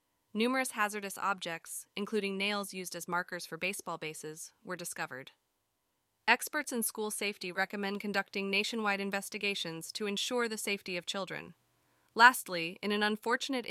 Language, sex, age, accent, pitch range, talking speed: English, female, 20-39, American, 170-210 Hz, 135 wpm